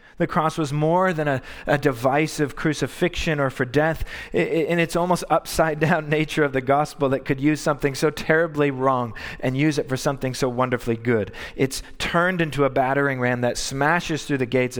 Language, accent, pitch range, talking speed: English, American, 120-150 Hz, 195 wpm